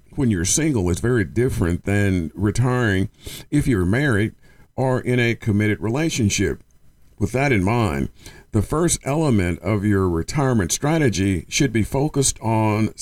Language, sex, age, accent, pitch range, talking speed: English, male, 50-69, American, 95-130 Hz, 145 wpm